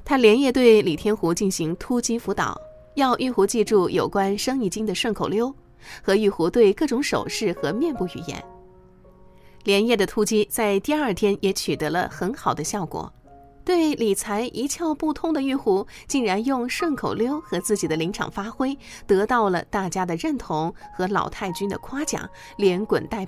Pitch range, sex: 190-260 Hz, female